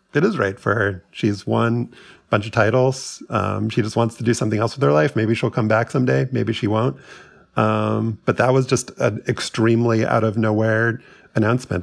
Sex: male